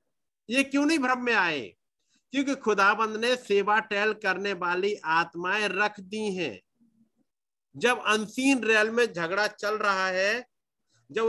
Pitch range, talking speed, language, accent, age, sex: 185-235 Hz, 140 wpm, Hindi, native, 50-69, male